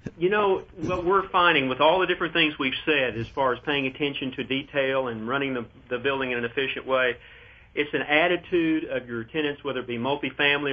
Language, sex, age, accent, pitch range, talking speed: English, male, 40-59, American, 120-140 Hz, 215 wpm